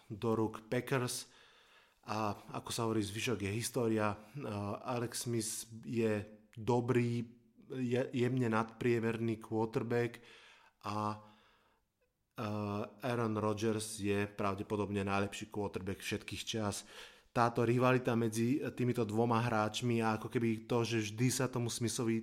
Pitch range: 105-120 Hz